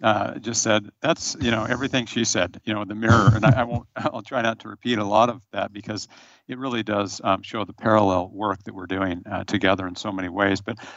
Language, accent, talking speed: English, American, 230 wpm